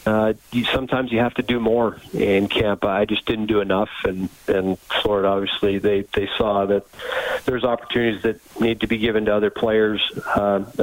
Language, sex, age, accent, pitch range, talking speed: English, male, 40-59, American, 105-120 Hz, 185 wpm